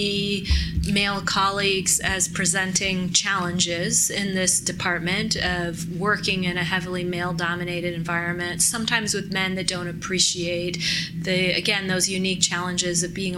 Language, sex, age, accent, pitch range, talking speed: English, female, 30-49, American, 175-210 Hz, 125 wpm